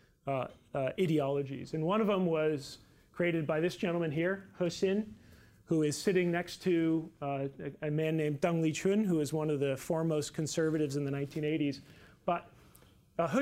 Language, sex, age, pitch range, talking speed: English, male, 40-59, 150-180 Hz, 165 wpm